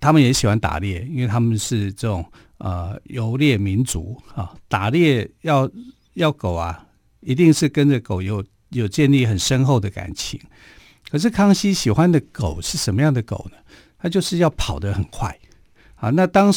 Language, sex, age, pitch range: Chinese, male, 50-69, 100-140 Hz